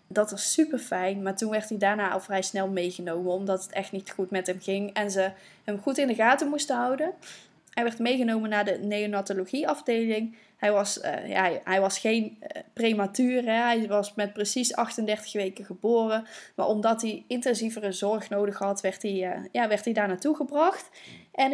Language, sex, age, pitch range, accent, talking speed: Dutch, female, 10-29, 210-245 Hz, Dutch, 190 wpm